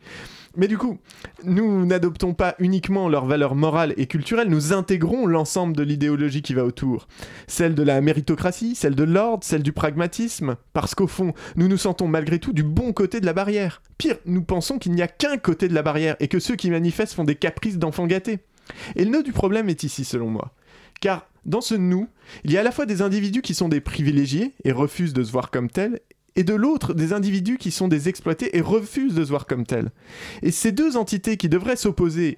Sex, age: male, 20-39